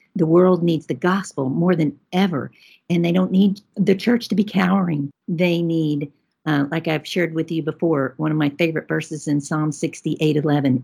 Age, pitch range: 50-69, 150-190 Hz